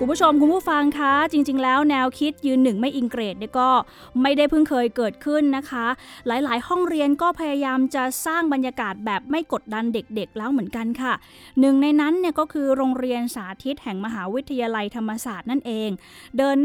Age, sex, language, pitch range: 20-39, female, Thai, 230-280 Hz